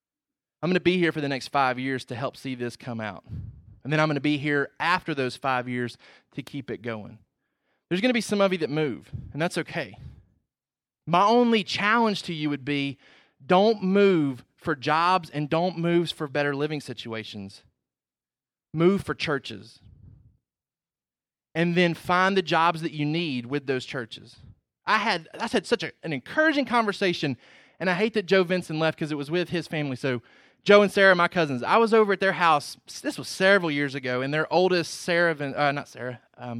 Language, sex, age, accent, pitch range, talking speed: English, male, 30-49, American, 125-175 Hz, 200 wpm